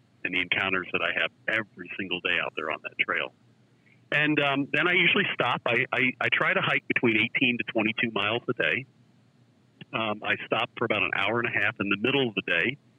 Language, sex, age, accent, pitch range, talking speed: English, male, 50-69, American, 115-145 Hz, 225 wpm